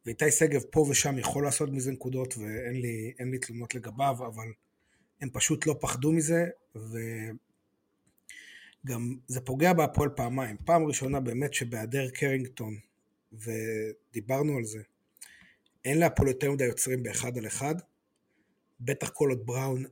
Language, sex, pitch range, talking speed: Hebrew, male, 120-145 Hz, 135 wpm